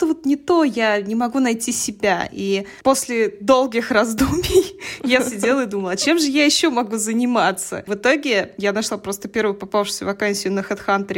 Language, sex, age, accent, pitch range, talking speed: Russian, female, 20-39, native, 210-255 Hz, 175 wpm